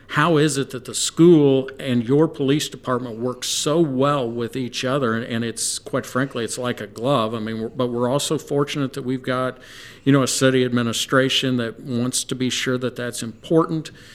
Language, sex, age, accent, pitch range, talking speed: English, male, 50-69, American, 115-135 Hz, 195 wpm